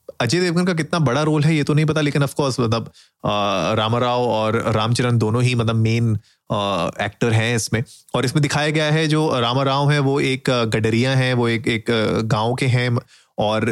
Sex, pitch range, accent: male, 110-135 Hz, native